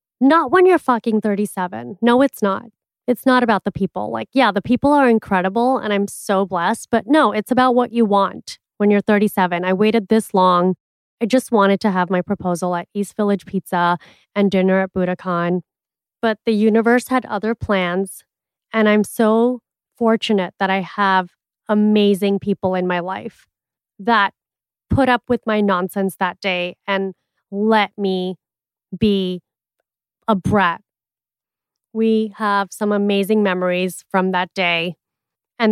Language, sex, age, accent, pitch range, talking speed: English, female, 20-39, American, 190-230 Hz, 155 wpm